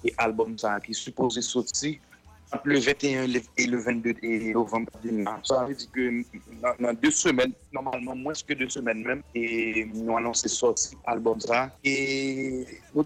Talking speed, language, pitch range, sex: 165 wpm, English, 115-140 Hz, male